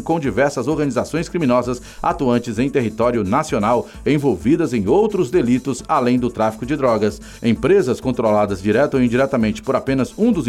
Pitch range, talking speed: 115-155 Hz, 150 wpm